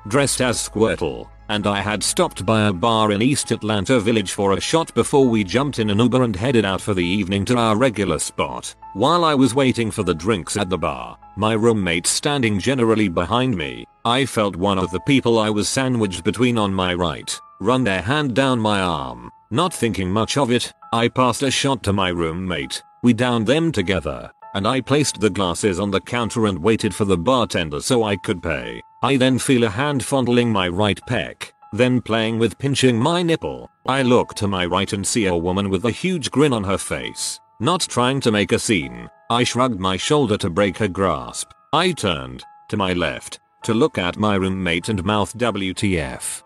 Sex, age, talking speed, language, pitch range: male, 40-59, 205 wpm, English, 100-130 Hz